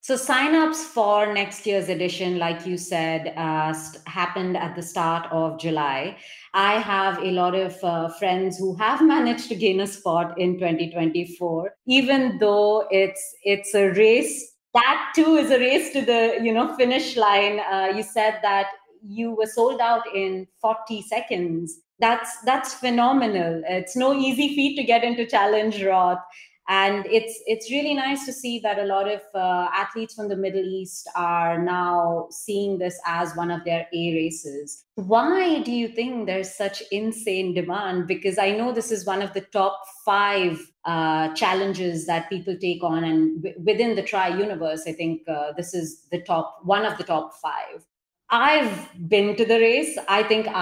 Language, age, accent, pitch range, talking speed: English, 30-49, Indian, 175-225 Hz, 175 wpm